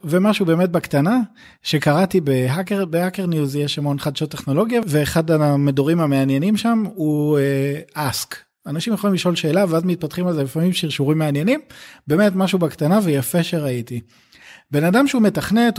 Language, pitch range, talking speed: Hebrew, 145-195 Hz, 140 wpm